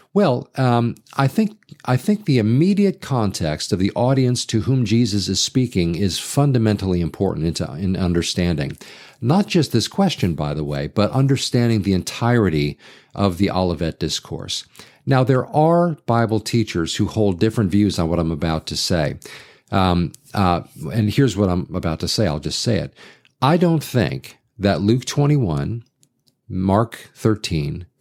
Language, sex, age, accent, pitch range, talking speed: English, male, 50-69, American, 95-130 Hz, 155 wpm